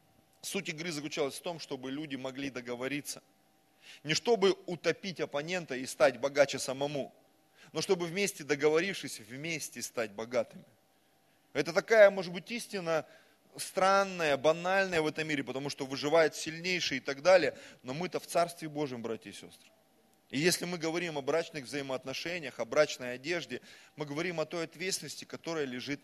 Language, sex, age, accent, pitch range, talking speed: Russian, male, 20-39, native, 140-175 Hz, 150 wpm